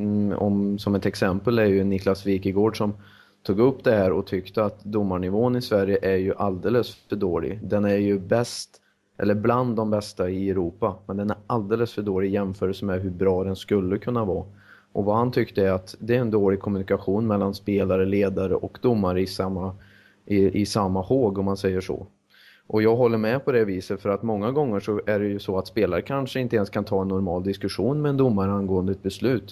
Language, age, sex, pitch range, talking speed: Swedish, 30-49, male, 95-110 Hz, 215 wpm